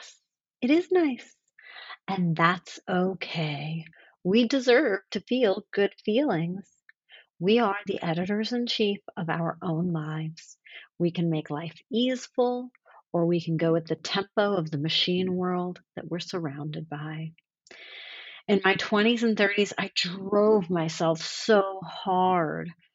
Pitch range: 165-215 Hz